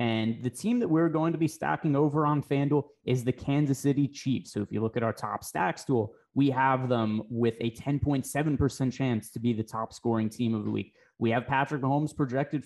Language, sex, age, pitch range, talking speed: English, male, 20-39, 115-140 Hz, 225 wpm